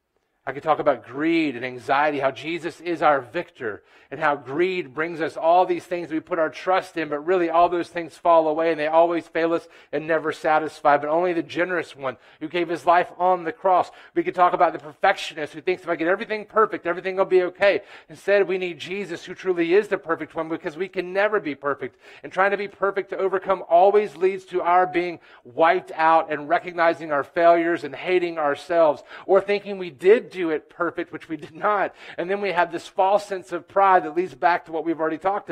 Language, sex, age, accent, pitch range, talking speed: English, male, 40-59, American, 155-185 Hz, 225 wpm